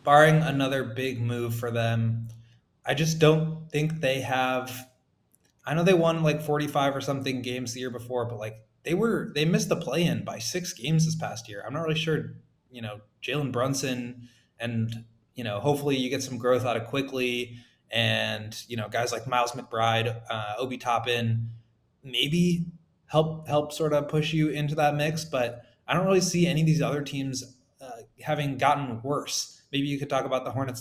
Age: 20-39